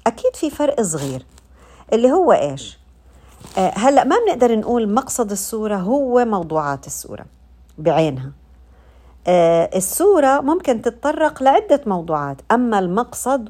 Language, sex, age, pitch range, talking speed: Arabic, female, 50-69, 160-215 Hz, 115 wpm